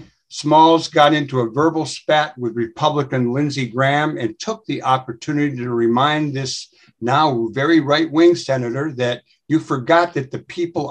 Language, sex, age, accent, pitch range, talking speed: English, male, 60-79, American, 125-150 Hz, 150 wpm